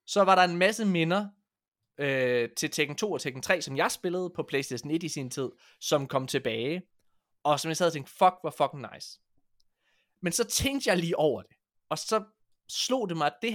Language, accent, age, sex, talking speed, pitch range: Danish, native, 20-39, male, 215 wpm, 135-185 Hz